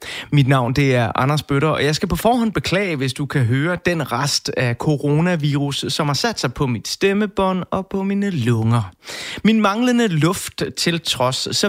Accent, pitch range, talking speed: native, 145-200 Hz, 190 wpm